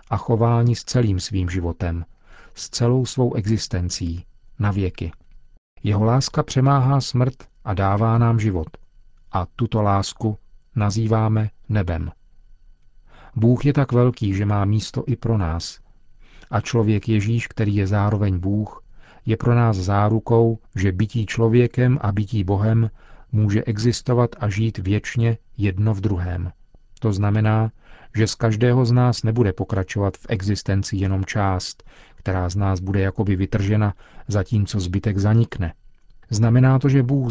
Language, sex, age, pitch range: Czech, male, 40-59, 100-115 Hz